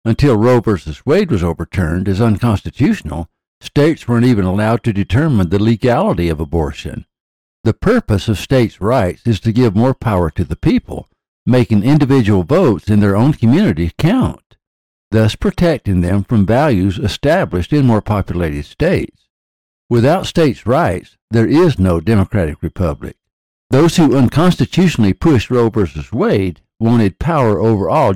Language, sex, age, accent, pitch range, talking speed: English, male, 60-79, American, 90-120 Hz, 145 wpm